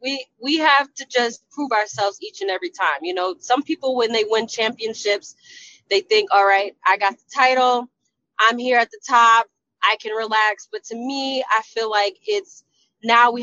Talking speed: 195 wpm